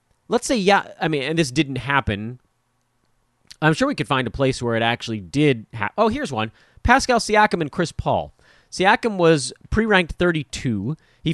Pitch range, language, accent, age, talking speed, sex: 120-180 Hz, English, American, 30-49, 180 wpm, male